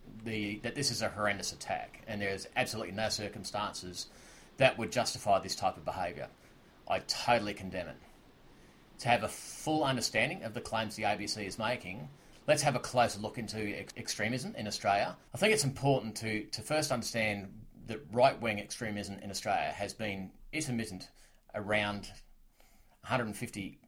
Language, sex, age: English, male, 30-49